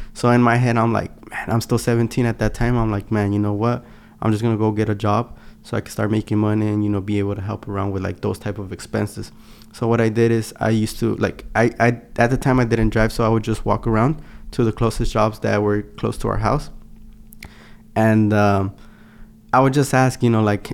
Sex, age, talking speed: male, 20-39, 260 wpm